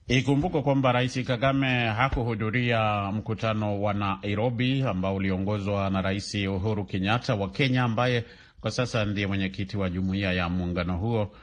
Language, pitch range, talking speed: Swahili, 100-125 Hz, 135 wpm